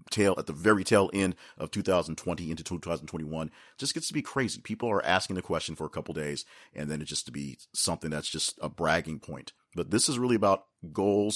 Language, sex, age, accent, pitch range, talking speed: English, male, 40-59, American, 75-100 Hz, 220 wpm